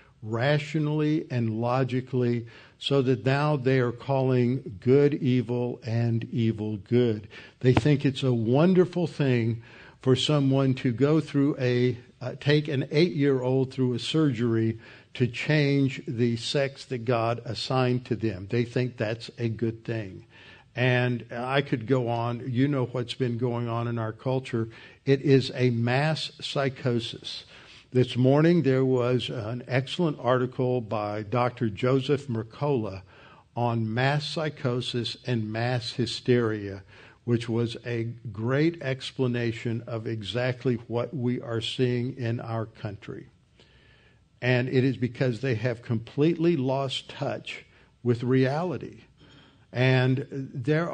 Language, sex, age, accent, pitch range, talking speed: English, male, 60-79, American, 115-135 Hz, 130 wpm